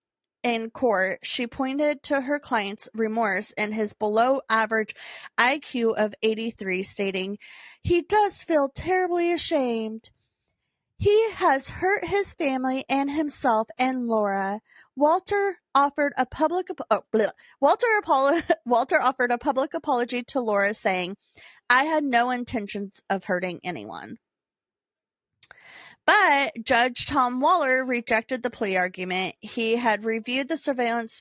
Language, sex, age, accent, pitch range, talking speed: English, female, 30-49, American, 210-280 Hz, 125 wpm